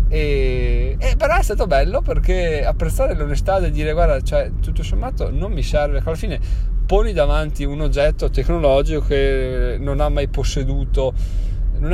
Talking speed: 160 wpm